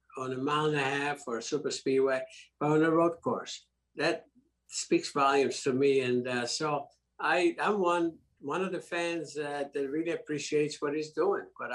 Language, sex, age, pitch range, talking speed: English, male, 60-79, 130-165 Hz, 195 wpm